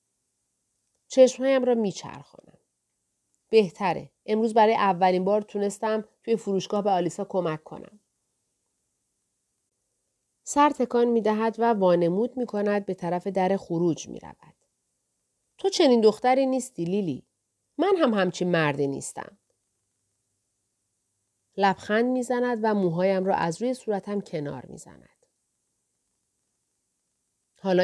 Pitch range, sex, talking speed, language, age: 170-235 Hz, female, 100 wpm, Persian, 40-59